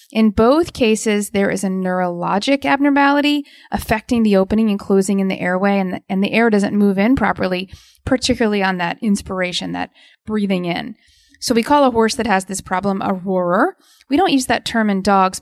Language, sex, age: English, female, 30-49